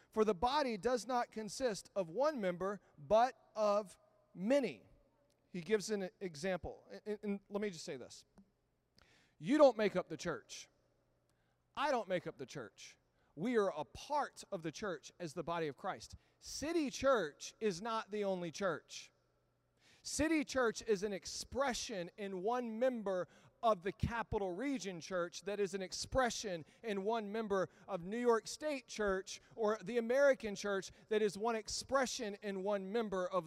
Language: English